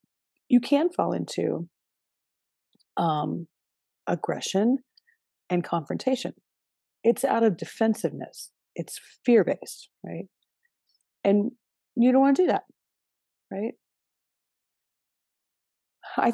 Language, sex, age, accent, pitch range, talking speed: English, female, 40-59, American, 170-265 Hz, 90 wpm